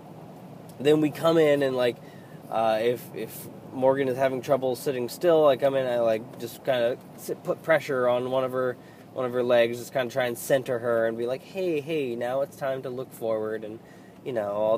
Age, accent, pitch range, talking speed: 20-39, American, 115-150 Hz, 225 wpm